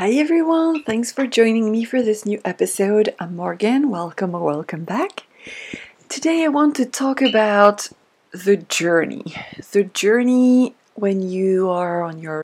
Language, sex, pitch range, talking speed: English, female, 185-245 Hz, 150 wpm